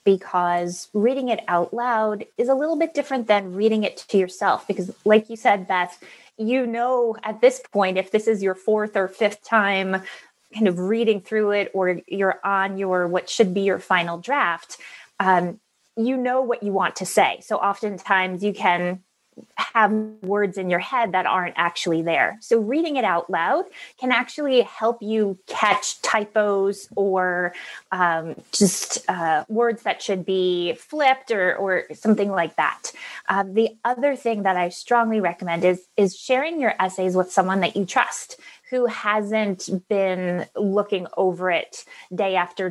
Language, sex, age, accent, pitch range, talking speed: English, female, 20-39, American, 185-230 Hz, 170 wpm